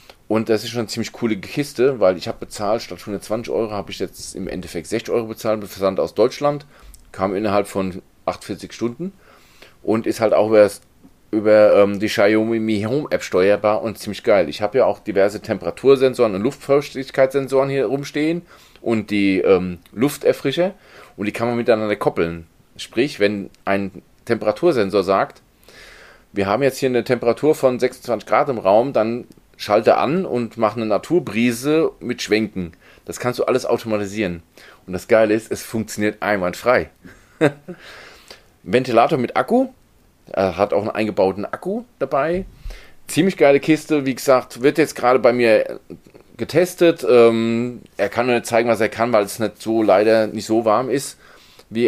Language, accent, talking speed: German, German, 170 wpm